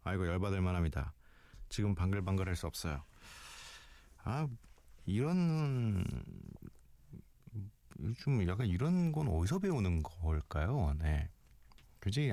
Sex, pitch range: male, 80-115 Hz